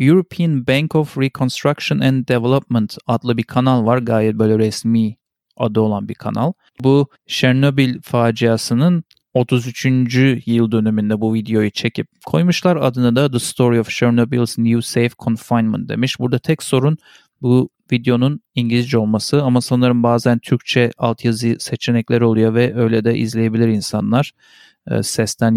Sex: male